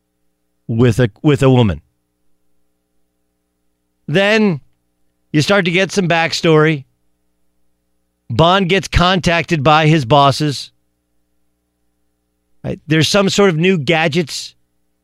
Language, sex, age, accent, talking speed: English, male, 40-59, American, 95 wpm